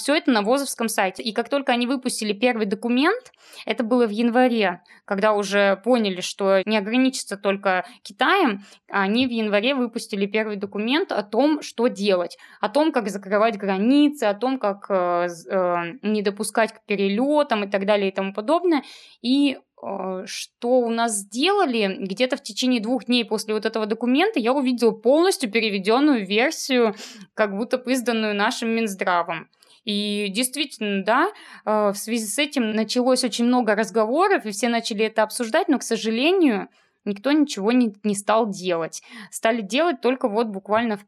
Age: 20-39